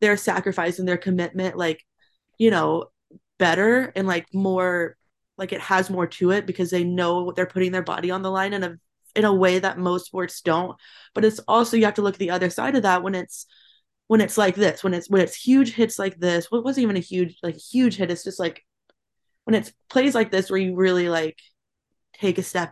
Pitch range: 180-210 Hz